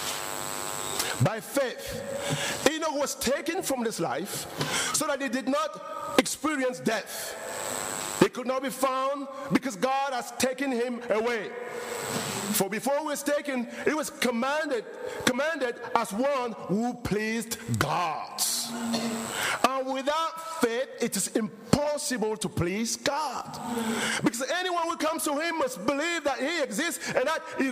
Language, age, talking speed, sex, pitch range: English, 50-69, 135 wpm, male, 225-285 Hz